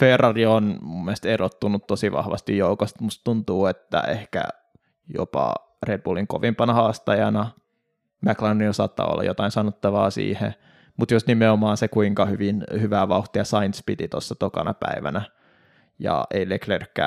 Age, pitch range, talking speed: 20-39, 100-120 Hz, 135 wpm